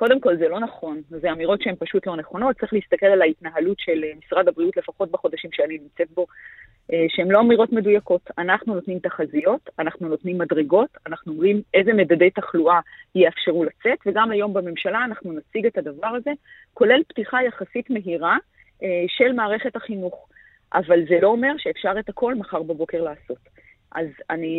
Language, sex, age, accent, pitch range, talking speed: Hebrew, female, 30-49, native, 170-230 Hz, 165 wpm